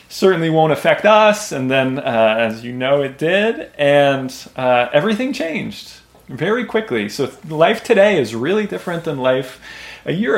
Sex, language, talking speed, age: male, English, 160 wpm, 20-39